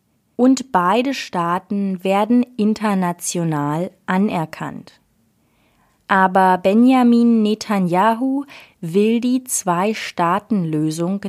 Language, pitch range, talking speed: German, 180-245 Hz, 65 wpm